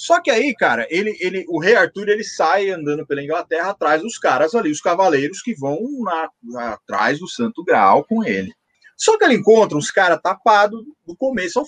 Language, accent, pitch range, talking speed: Portuguese, Brazilian, 175-280 Hz, 200 wpm